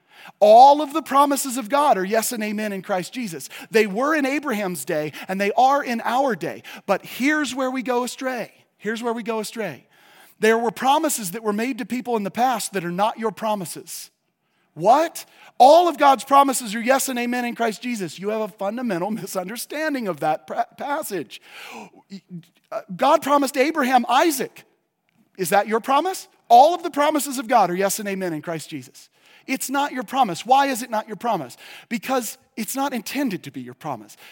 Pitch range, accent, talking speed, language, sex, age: 185-265 Hz, American, 190 wpm, English, male, 40-59